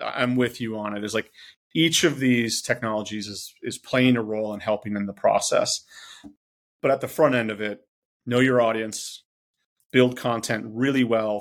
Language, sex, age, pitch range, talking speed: English, male, 30-49, 105-125 Hz, 185 wpm